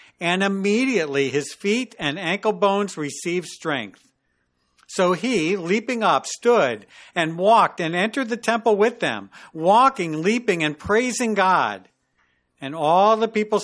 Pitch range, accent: 160-215 Hz, American